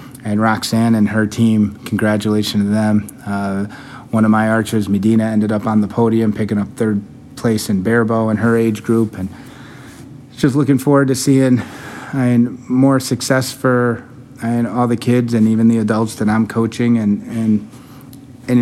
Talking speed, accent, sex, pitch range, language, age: 175 wpm, American, male, 110-125 Hz, English, 30-49